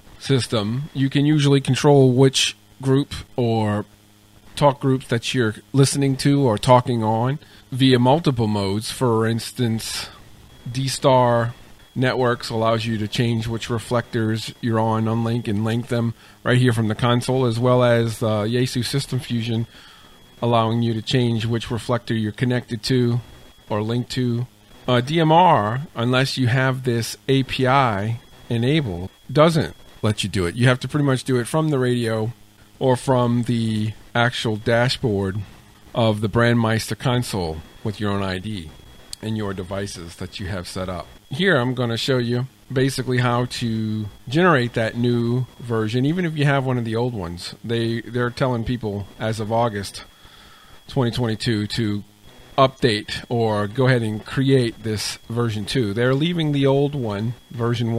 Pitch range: 110-130 Hz